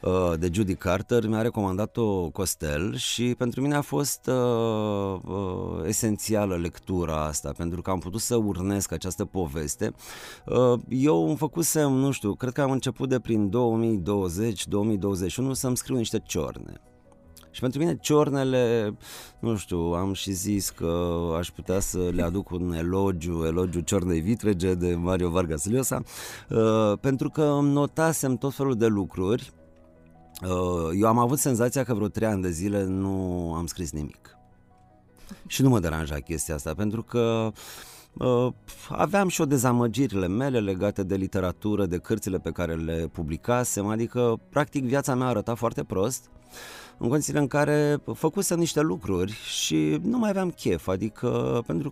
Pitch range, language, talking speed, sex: 85-125 Hz, Romanian, 150 wpm, male